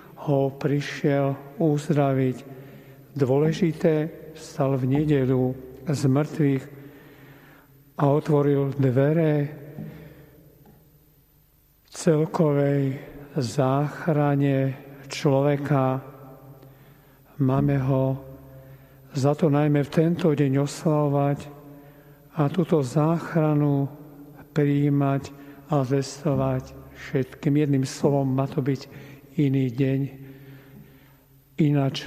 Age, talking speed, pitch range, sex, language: 50-69, 75 wpm, 135-150 Hz, male, Slovak